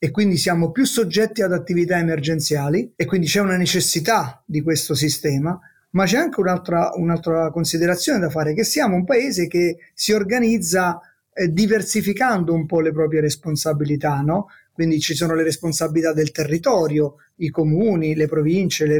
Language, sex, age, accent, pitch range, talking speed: Italian, male, 30-49, native, 165-215 Hz, 155 wpm